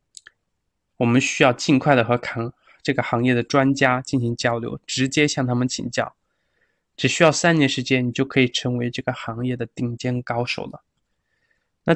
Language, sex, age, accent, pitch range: Chinese, male, 20-39, native, 125-150 Hz